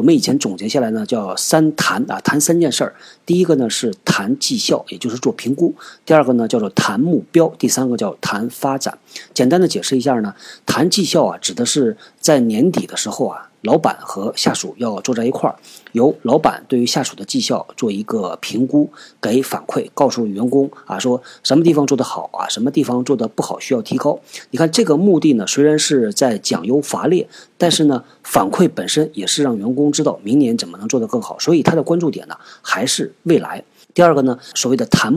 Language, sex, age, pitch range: Chinese, male, 50-69, 125-165 Hz